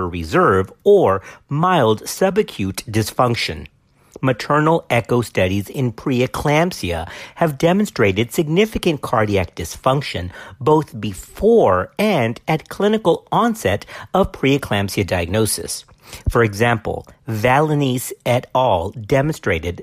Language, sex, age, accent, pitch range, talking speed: English, male, 50-69, American, 105-165 Hz, 90 wpm